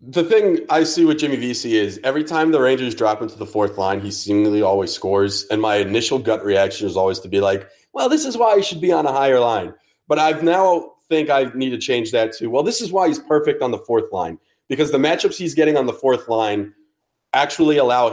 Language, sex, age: English, male, 30-49